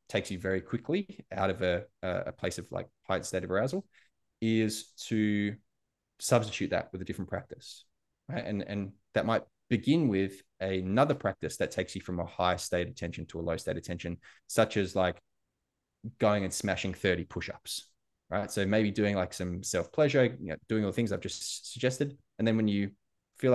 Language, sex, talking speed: English, male, 190 wpm